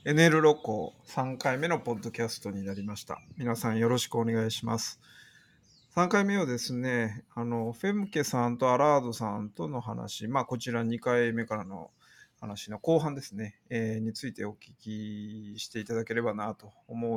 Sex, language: male, Japanese